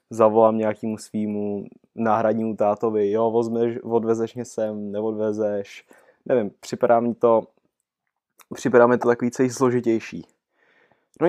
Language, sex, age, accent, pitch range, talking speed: Czech, male, 20-39, native, 105-120 Hz, 110 wpm